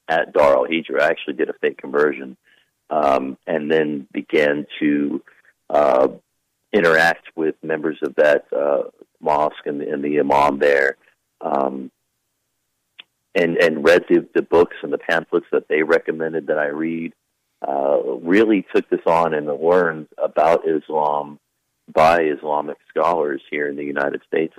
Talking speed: 150 wpm